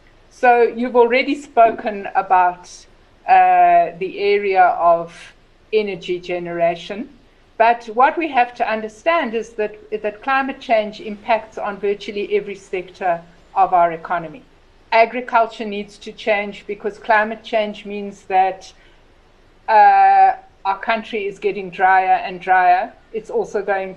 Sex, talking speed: female, 125 wpm